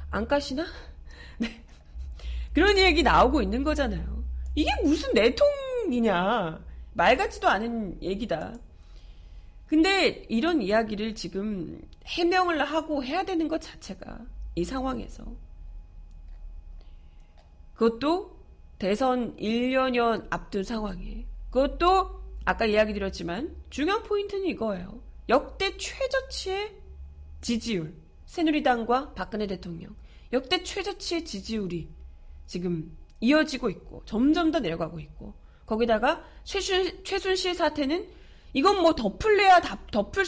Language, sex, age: Korean, female, 30-49